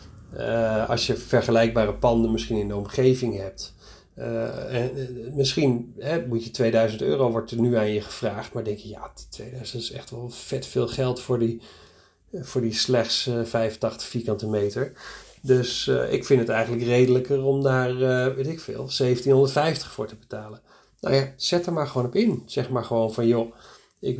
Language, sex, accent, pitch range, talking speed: Dutch, male, Dutch, 110-140 Hz, 180 wpm